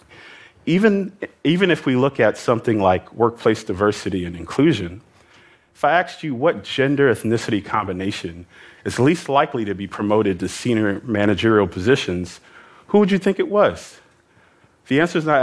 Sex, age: male, 40-59